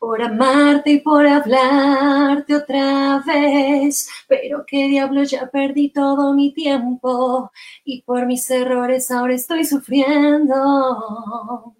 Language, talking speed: Spanish, 110 wpm